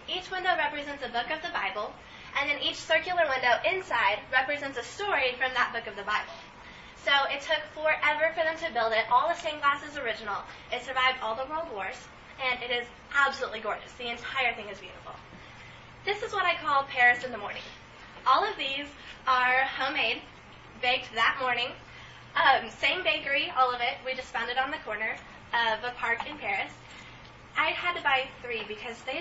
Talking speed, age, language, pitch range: 195 wpm, 10-29, English, 245-320 Hz